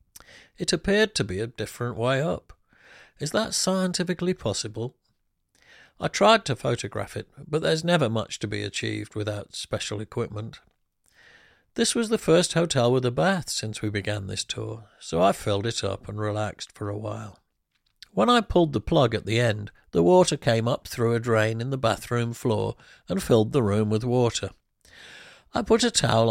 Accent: British